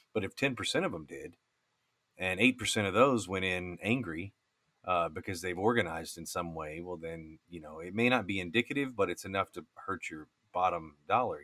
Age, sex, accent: 30-49, male, American